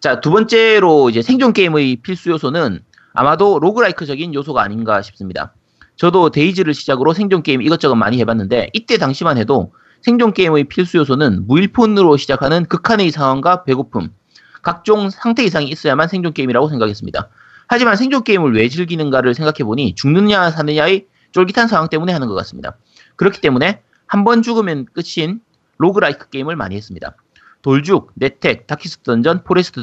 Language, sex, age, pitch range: Korean, male, 30-49, 130-195 Hz